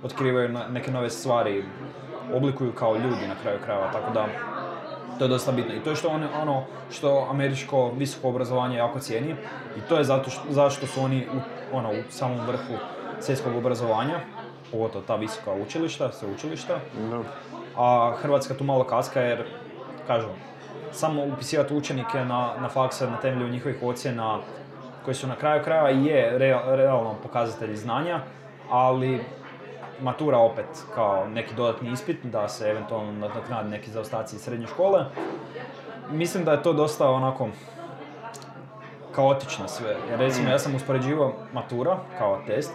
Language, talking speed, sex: Croatian, 150 wpm, male